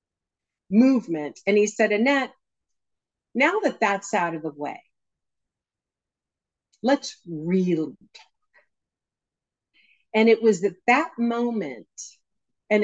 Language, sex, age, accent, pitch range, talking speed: English, female, 50-69, American, 175-230 Hz, 105 wpm